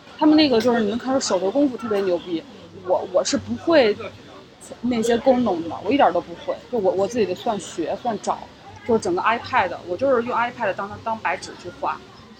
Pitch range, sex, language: 195-245 Hz, female, Chinese